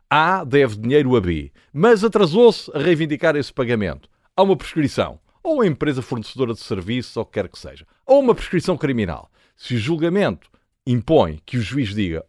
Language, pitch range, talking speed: Portuguese, 115-160 Hz, 180 wpm